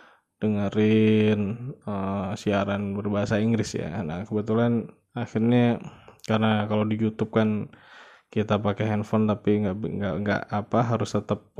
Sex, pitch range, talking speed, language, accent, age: male, 105-115 Hz, 120 wpm, Indonesian, native, 20-39